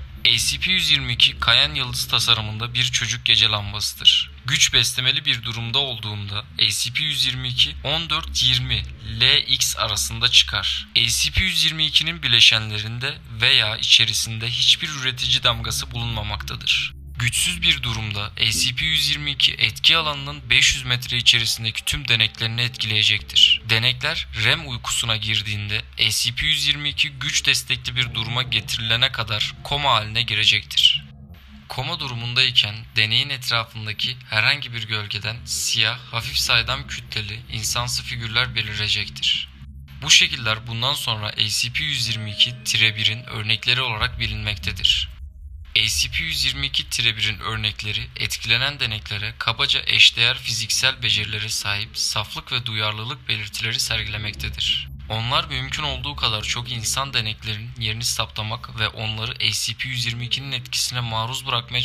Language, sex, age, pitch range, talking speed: Turkish, male, 20-39, 105-125 Hz, 100 wpm